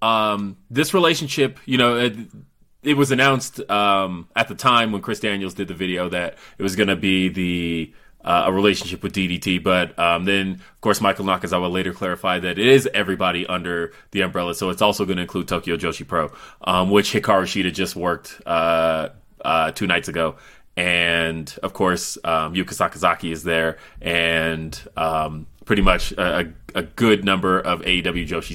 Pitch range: 90-110 Hz